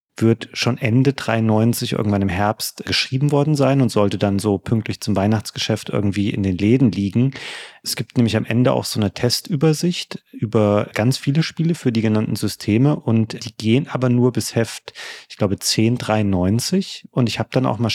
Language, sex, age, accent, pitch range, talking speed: German, male, 30-49, German, 105-130 Hz, 185 wpm